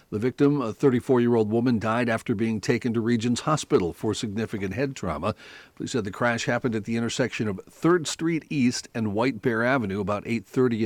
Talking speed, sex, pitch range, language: 190 wpm, male, 105-130 Hz, English